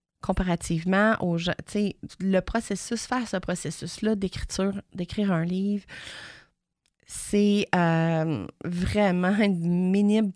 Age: 30-49